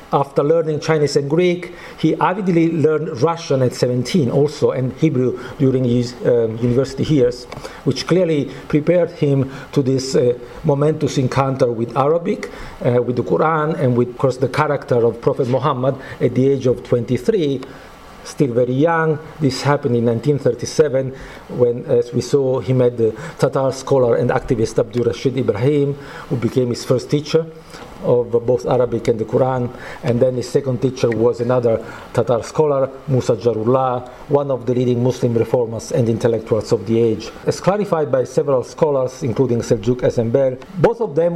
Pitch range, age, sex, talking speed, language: 120-150 Hz, 50-69, male, 165 wpm, English